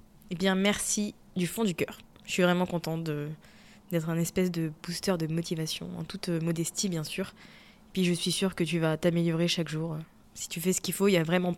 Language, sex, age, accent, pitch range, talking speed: French, female, 20-39, French, 170-205 Hz, 225 wpm